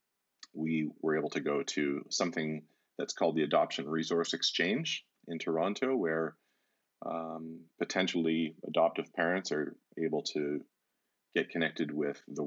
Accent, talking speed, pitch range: American, 130 wpm, 75-85 Hz